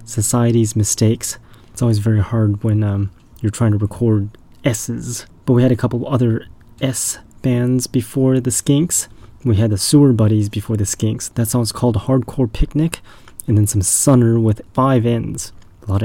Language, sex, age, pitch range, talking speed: English, male, 30-49, 105-125 Hz, 170 wpm